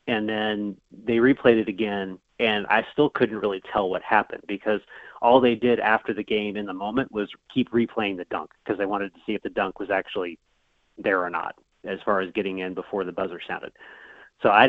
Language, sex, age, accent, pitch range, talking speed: English, male, 30-49, American, 105-130 Hz, 215 wpm